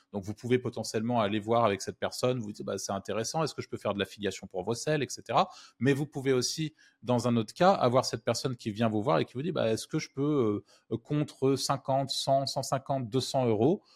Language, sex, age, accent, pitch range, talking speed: French, male, 20-39, French, 110-135 Hz, 245 wpm